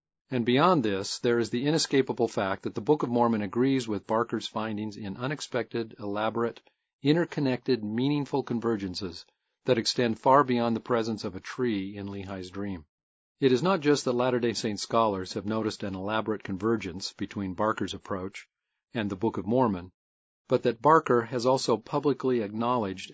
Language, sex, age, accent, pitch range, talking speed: English, male, 40-59, American, 100-125 Hz, 165 wpm